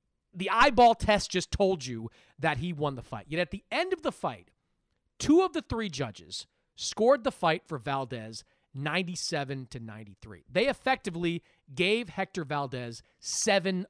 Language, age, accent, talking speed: English, 30-49, American, 155 wpm